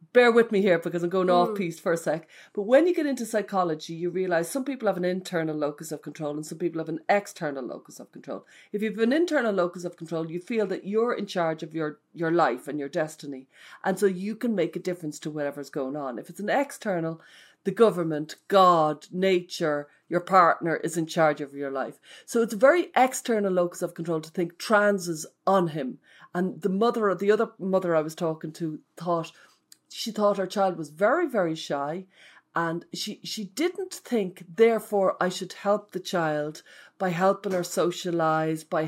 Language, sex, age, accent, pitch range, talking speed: English, female, 40-59, Irish, 160-210 Hz, 205 wpm